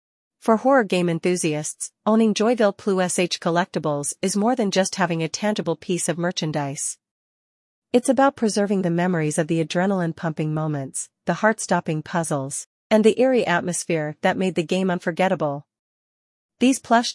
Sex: female